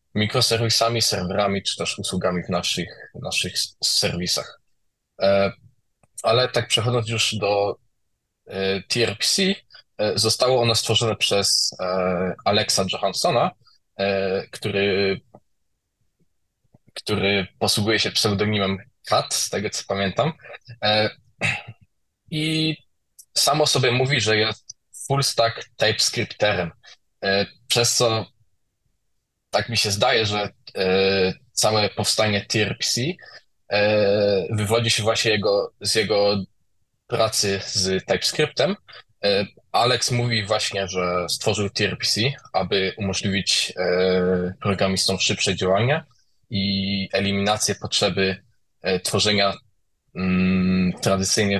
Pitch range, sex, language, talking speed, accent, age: 95-115 Hz, male, Polish, 95 wpm, native, 20-39